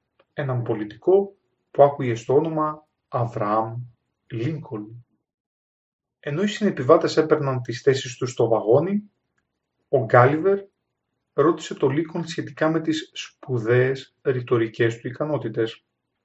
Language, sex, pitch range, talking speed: Greek, male, 125-200 Hz, 105 wpm